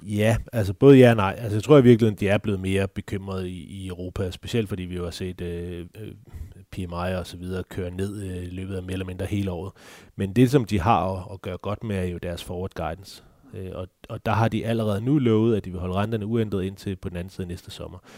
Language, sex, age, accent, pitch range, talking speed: Danish, male, 30-49, native, 90-105 Hz, 240 wpm